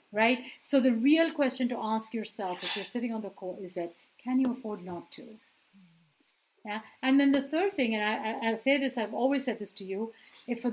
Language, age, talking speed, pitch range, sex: English, 50-69, 225 wpm, 210-260 Hz, female